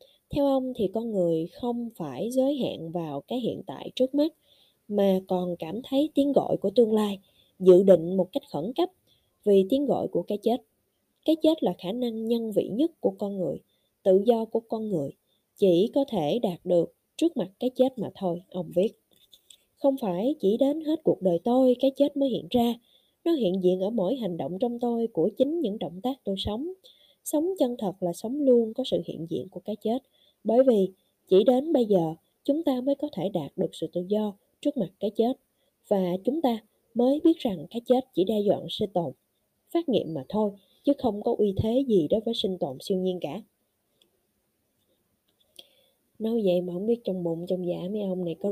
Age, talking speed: 20-39, 210 wpm